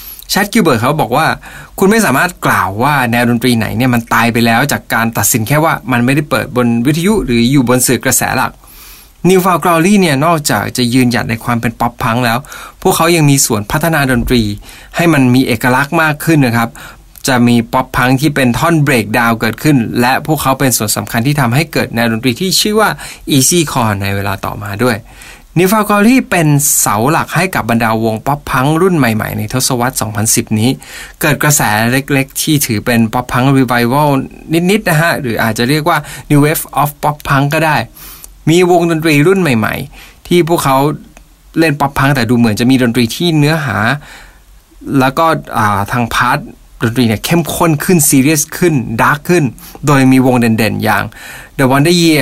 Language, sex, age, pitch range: Thai, male, 20-39, 120-160 Hz